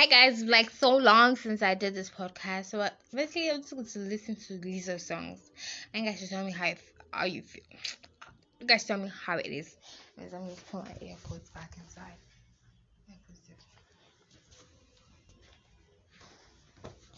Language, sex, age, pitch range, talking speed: English, female, 20-39, 175-220 Hz, 160 wpm